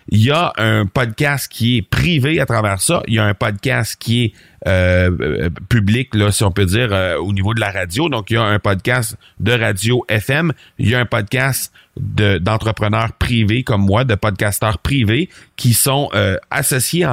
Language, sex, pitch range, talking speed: French, male, 105-130 Hz, 200 wpm